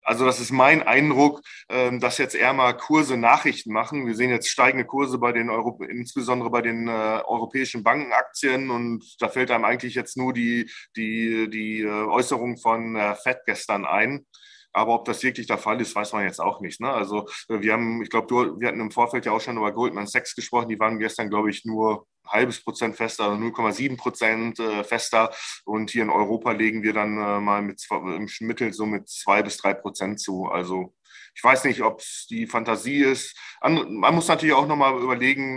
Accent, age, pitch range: German, 20-39, 110-125 Hz